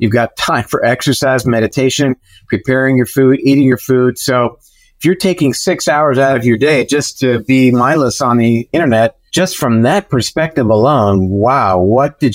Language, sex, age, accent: English, male, 50-69, American